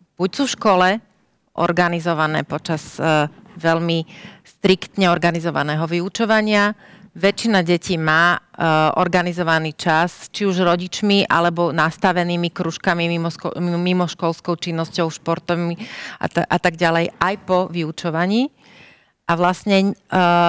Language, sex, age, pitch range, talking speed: Slovak, female, 40-59, 165-195 Hz, 110 wpm